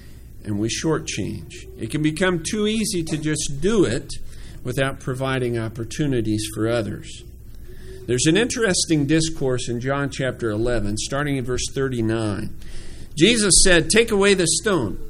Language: English